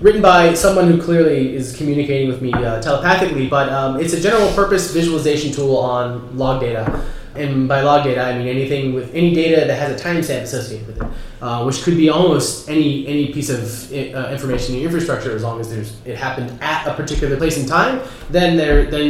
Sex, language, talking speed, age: male, English, 220 wpm, 20-39